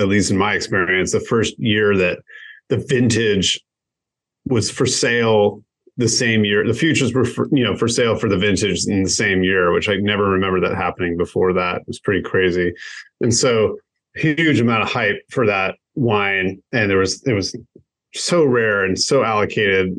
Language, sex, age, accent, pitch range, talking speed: English, male, 30-49, American, 95-135 Hz, 190 wpm